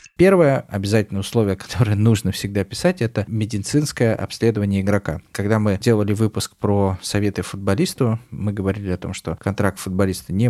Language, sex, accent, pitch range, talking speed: Russian, male, native, 95-115 Hz, 150 wpm